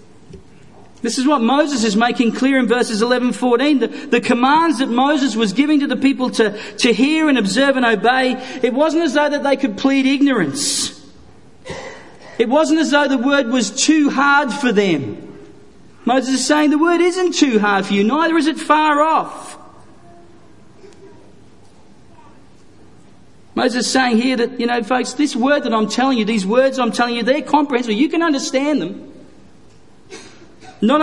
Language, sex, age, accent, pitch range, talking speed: English, male, 40-59, Australian, 210-270 Hz, 170 wpm